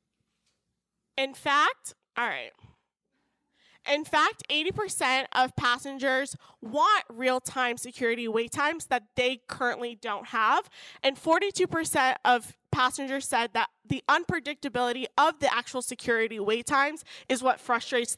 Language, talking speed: English, 120 wpm